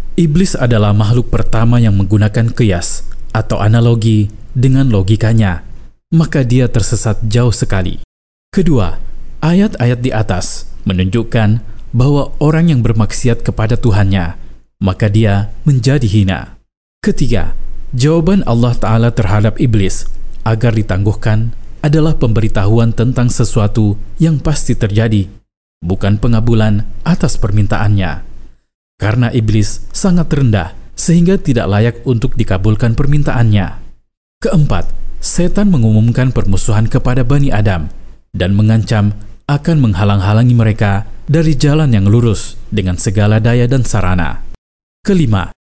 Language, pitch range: Indonesian, 105-130 Hz